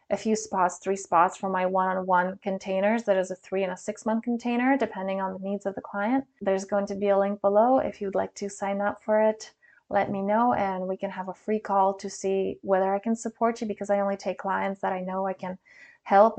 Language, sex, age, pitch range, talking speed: English, female, 20-39, 190-220 Hz, 250 wpm